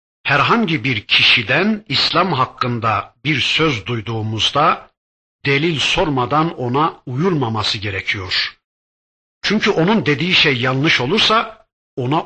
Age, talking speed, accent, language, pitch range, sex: 60-79, 100 wpm, native, Turkish, 115-165 Hz, male